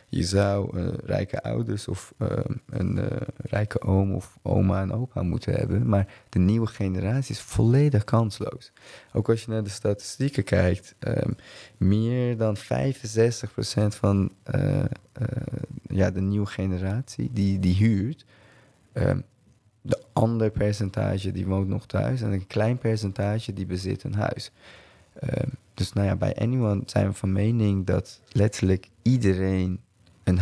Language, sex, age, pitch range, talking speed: English, male, 20-39, 95-120 Hz, 140 wpm